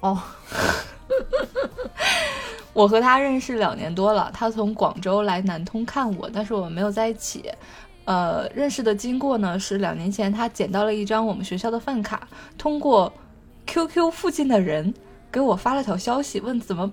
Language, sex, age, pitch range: Chinese, female, 20-39, 205-240 Hz